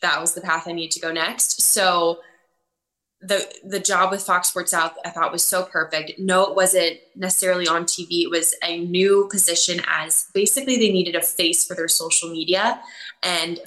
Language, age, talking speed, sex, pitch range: English, 20-39, 195 wpm, female, 165-190 Hz